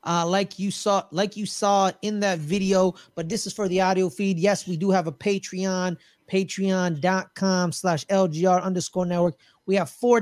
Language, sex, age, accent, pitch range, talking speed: English, male, 20-39, American, 160-190 Hz, 180 wpm